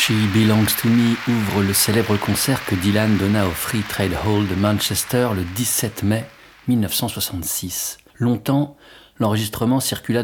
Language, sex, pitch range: French, male, 95-110 Hz